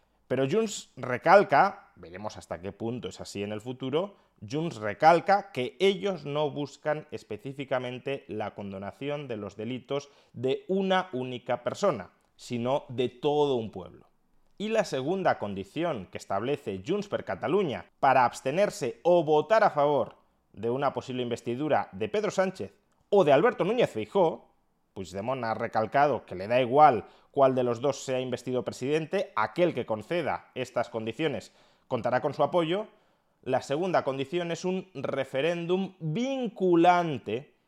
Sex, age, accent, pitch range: male, 30-49, Spanish, 120-170 Hz